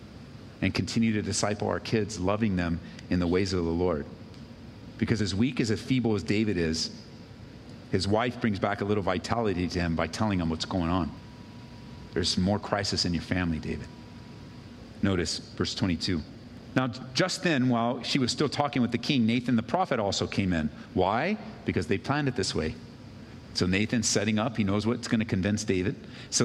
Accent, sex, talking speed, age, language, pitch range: American, male, 190 wpm, 40-59, English, 110-165 Hz